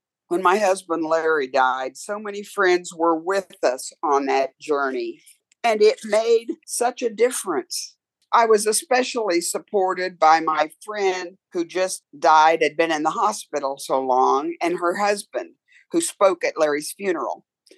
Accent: American